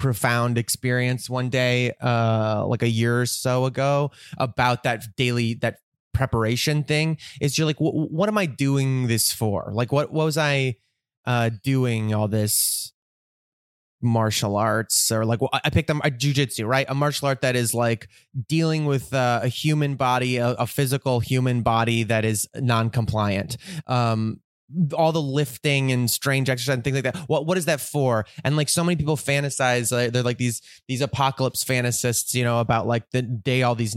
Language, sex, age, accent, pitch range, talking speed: English, male, 20-39, American, 115-140 Hz, 185 wpm